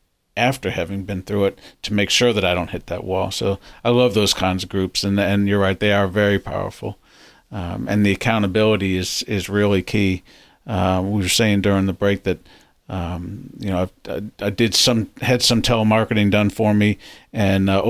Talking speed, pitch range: 200 wpm, 95-110 Hz